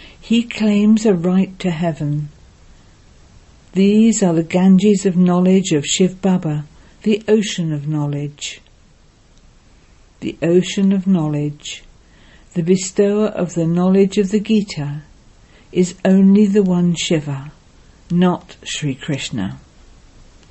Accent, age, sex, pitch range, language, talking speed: British, 60-79, female, 150-205 Hz, English, 115 wpm